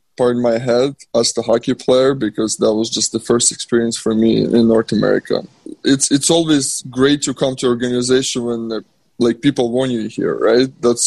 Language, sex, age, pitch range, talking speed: English, male, 20-39, 120-130 Hz, 190 wpm